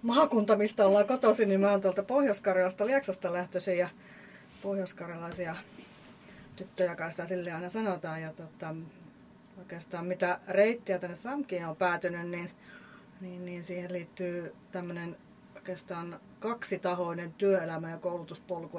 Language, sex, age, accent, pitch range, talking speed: Finnish, female, 30-49, native, 165-195 Hz, 125 wpm